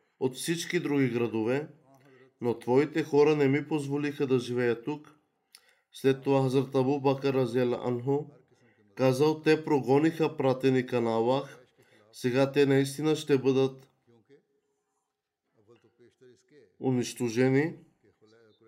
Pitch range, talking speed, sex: 130-155 Hz, 95 wpm, male